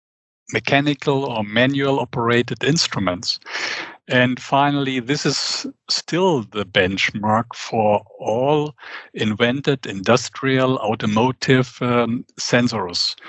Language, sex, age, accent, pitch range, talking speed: English, male, 60-79, German, 120-145 Hz, 85 wpm